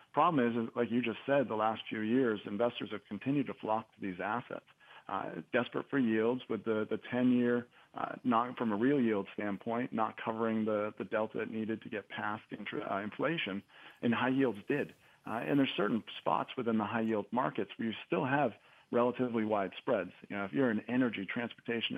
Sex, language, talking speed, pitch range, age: male, English, 200 wpm, 110-125 Hz, 40-59